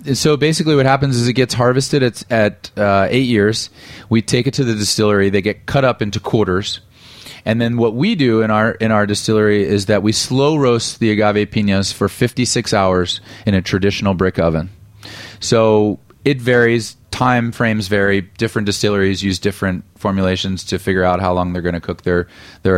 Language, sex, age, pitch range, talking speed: English, male, 30-49, 95-115 Hz, 190 wpm